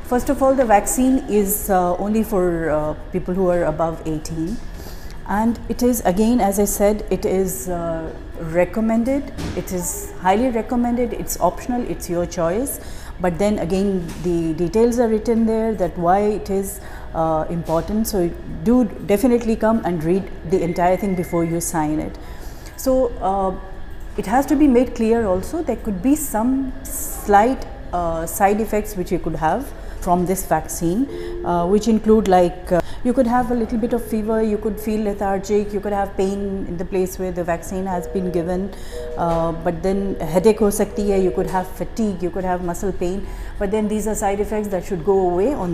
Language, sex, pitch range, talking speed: Urdu, female, 175-220 Hz, 185 wpm